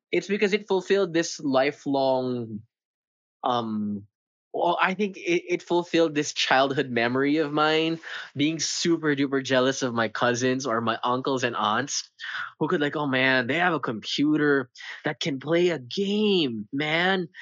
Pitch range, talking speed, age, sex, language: 125-180 Hz, 155 wpm, 20-39, male, English